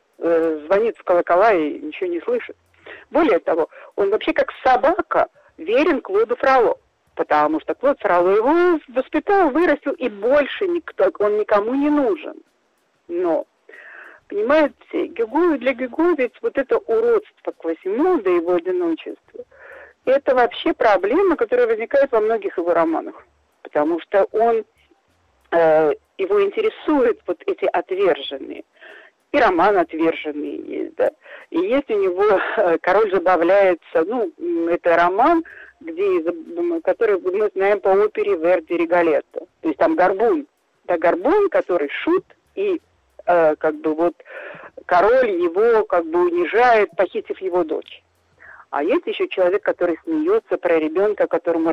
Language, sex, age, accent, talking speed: Russian, female, 50-69, native, 130 wpm